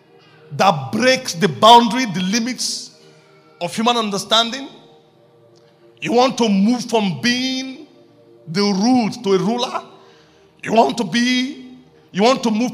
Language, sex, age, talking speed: English, male, 50-69, 130 wpm